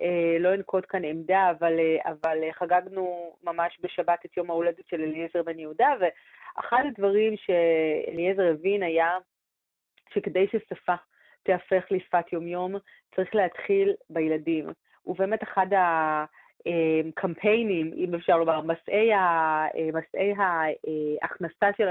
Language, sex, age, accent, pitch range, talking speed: Hebrew, female, 30-49, native, 165-190 Hz, 105 wpm